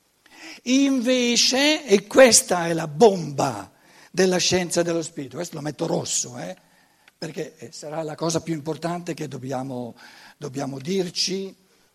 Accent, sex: native, male